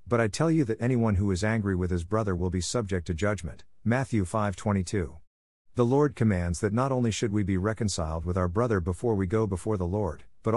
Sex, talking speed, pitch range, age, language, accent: male, 220 wpm, 90-115 Hz, 50-69, English, American